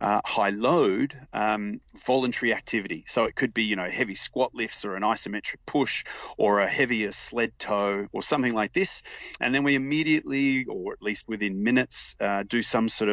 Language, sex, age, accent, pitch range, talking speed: English, male, 30-49, Australian, 105-125 Hz, 185 wpm